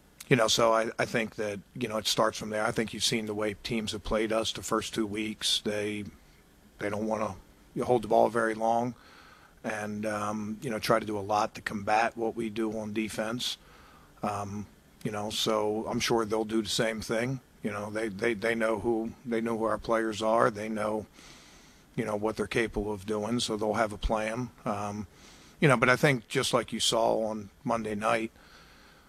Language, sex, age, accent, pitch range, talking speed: English, male, 50-69, American, 105-115 Hz, 215 wpm